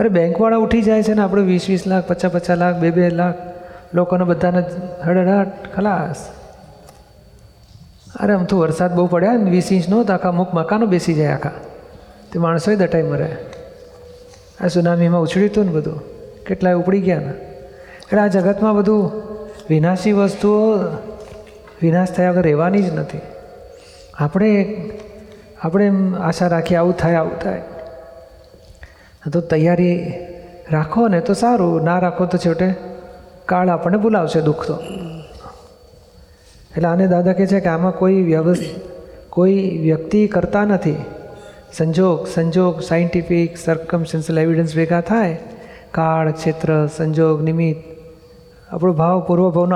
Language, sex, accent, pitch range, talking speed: Gujarati, male, native, 165-200 Hz, 135 wpm